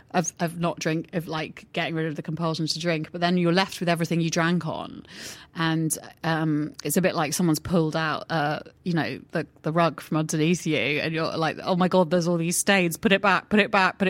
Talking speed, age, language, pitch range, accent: 245 wpm, 30-49, English, 155-200 Hz, British